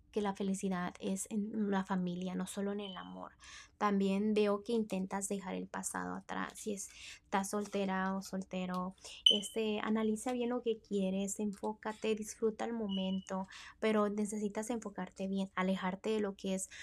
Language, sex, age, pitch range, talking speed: Spanish, female, 20-39, 185-215 Hz, 155 wpm